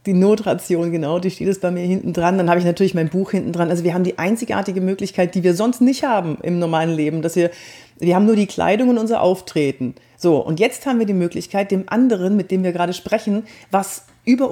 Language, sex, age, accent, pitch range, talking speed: German, female, 40-59, German, 170-210 Hz, 240 wpm